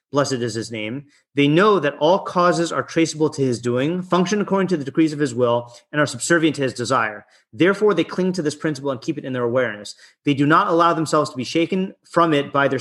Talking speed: 245 wpm